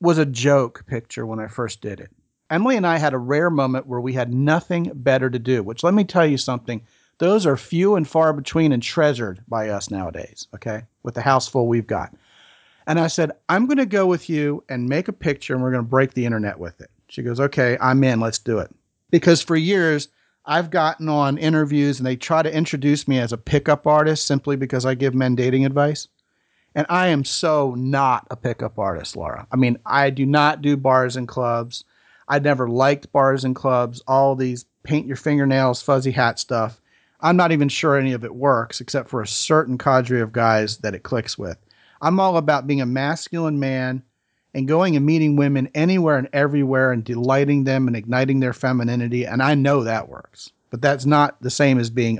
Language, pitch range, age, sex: English, 125-150 Hz, 40-59, male